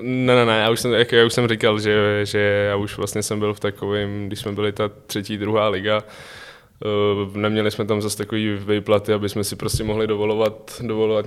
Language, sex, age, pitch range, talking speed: Czech, male, 20-39, 105-110 Hz, 210 wpm